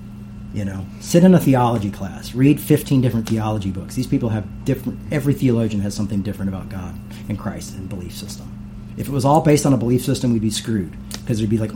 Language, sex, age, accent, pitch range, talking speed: English, male, 40-59, American, 100-125 Hz, 225 wpm